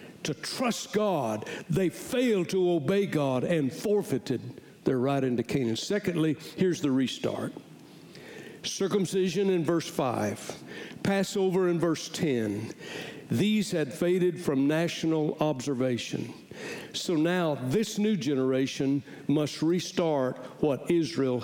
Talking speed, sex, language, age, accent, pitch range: 115 wpm, male, English, 60-79, American, 135-170 Hz